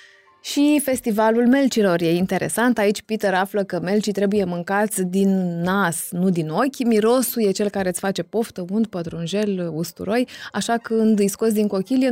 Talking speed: 165 wpm